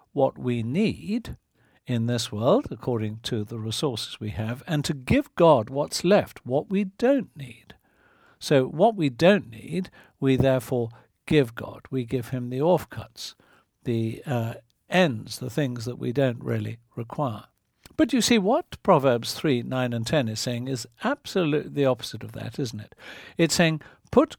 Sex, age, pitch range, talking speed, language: male, 60-79, 115-170 Hz, 165 wpm, English